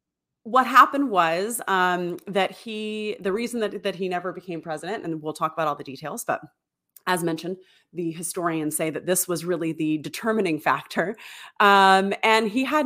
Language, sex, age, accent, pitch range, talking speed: English, female, 30-49, American, 160-215 Hz, 175 wpm